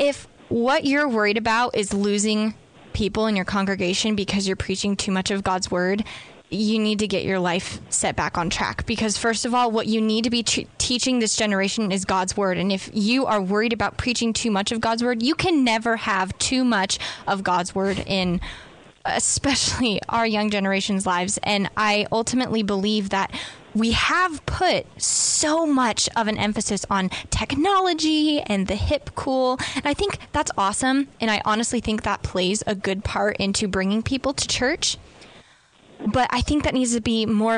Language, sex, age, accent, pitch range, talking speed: English, female, 10-29, American, 195-240 Hz, 185 wpm